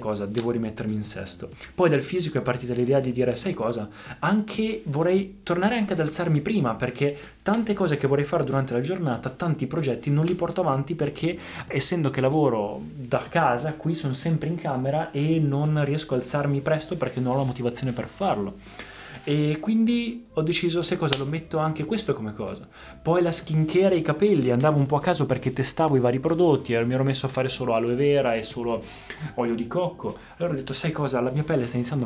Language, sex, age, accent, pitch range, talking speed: Italian, male, 20-39, native, 125-160 Hz, 215 wpm